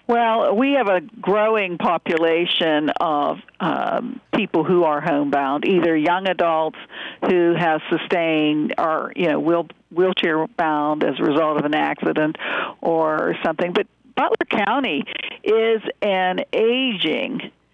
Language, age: English, 60-79